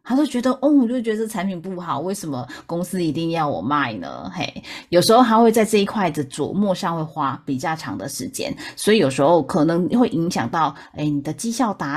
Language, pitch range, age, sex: Chinese, 145-210 Hz, 30-49, female